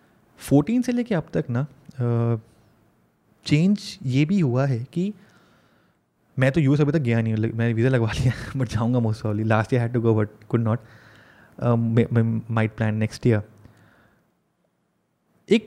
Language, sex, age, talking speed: Hindi, male, 20-39, 155 wpm